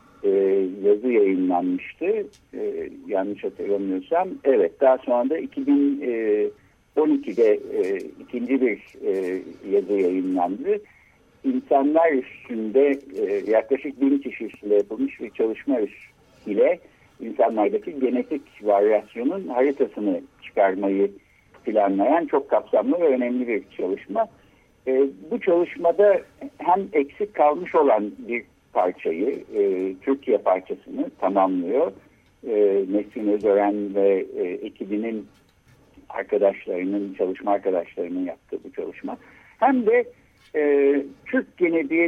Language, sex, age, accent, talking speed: Turkish, male, 60-79, native, 90 wpm